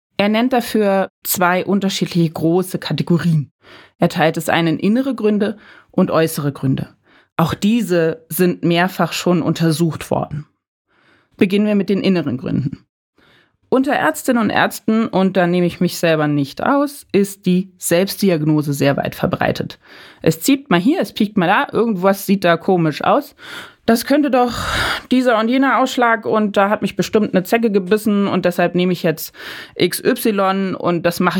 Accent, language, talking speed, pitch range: German, German, 160 wpm, 170-220 Hz